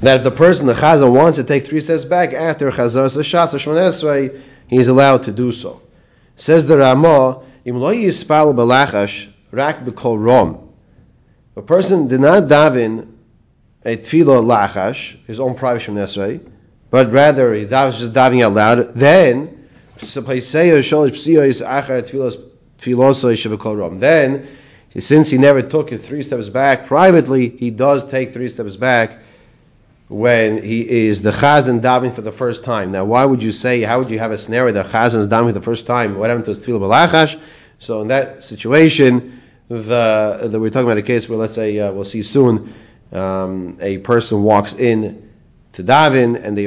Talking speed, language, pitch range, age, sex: 150 wpm, English, 110-135 Hz, 40-59, male